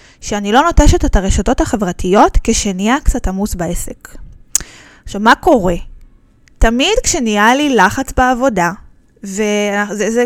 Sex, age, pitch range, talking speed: female, 20-39, 205-265 Hz, 110 wpm